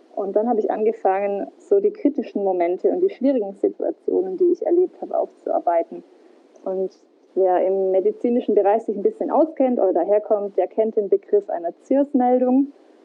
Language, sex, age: German, female, 20-39